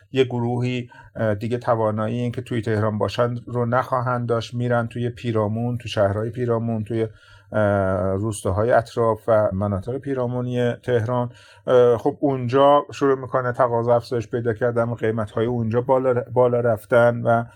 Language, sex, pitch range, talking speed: Persian, male, 110-130 Hz, 135 wpm